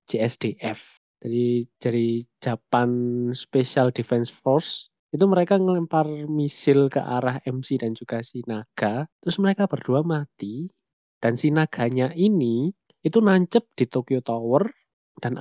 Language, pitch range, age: Indonesian, 120-160 Hz, 20-39